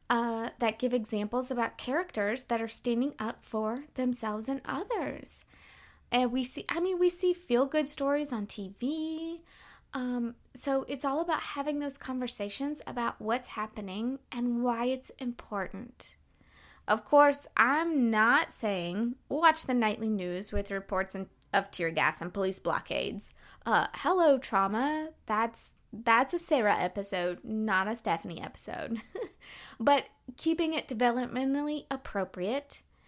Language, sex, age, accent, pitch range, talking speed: English, female, 20-39, American, 210-275 Hz, 135 wpm